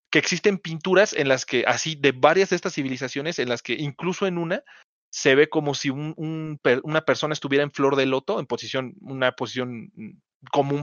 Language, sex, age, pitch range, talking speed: Spanish, male, 30-49, 135-170 Hz, 190 wpm